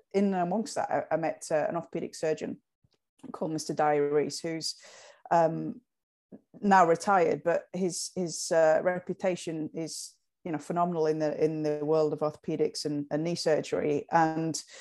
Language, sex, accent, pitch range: English, female, British, 155-185 Hz